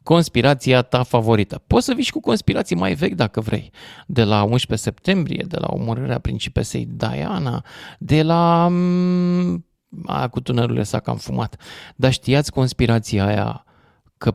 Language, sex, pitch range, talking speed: Romanian, male, 110-160 Hz, 145 wpm